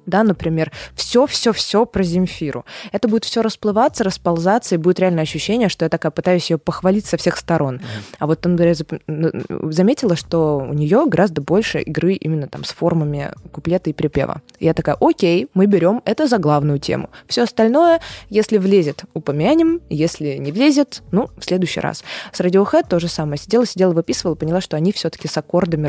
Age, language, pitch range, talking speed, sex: 20-39, Russian, 155-205 Hz, 175 wpm, female